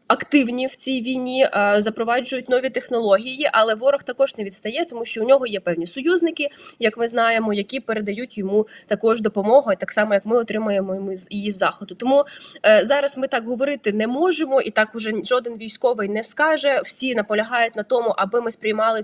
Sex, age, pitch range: female, 20-39, 210-260 Hz